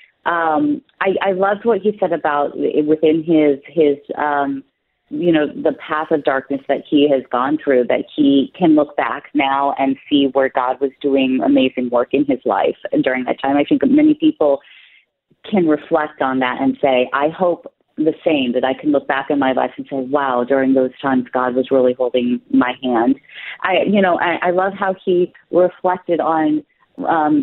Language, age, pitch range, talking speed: English, 30-49, 135-165 Hz, 195 wpm